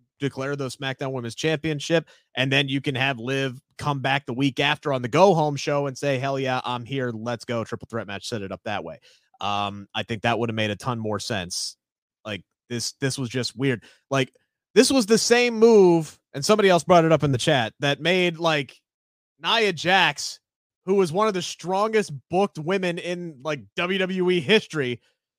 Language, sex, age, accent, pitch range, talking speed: English, male, 30-49, American, 125-170 Hz, 205 wpm